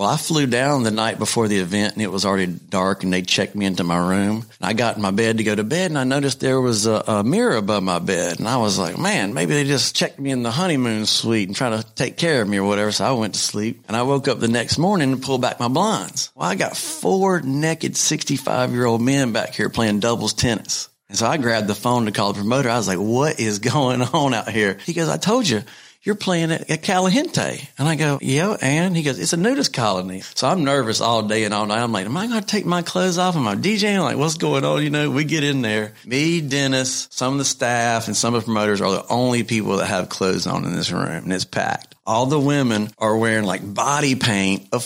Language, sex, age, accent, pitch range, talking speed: English, male, 40-59, American, 105-145 Hz, 265 wpm